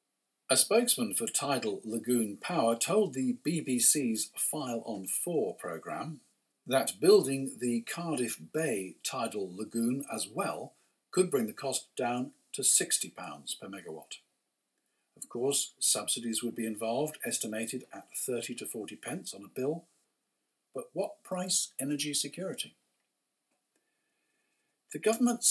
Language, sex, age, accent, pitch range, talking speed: English, male, 50-69, British, 120-185 Hz, 125 wpm